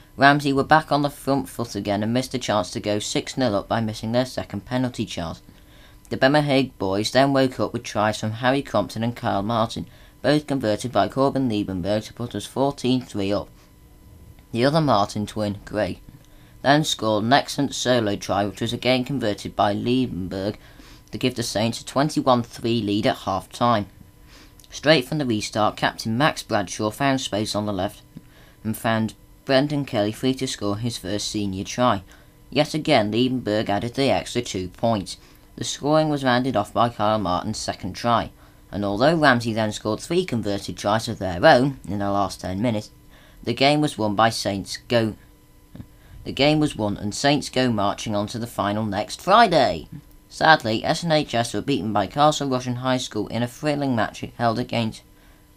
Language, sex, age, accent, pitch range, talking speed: English, female, 20-39, British, 105-130 Hz, 180 wpm